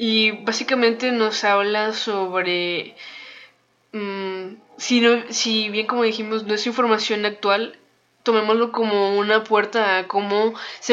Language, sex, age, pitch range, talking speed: Spanish, female, 10-29, 190-220 Hz, 125 wpm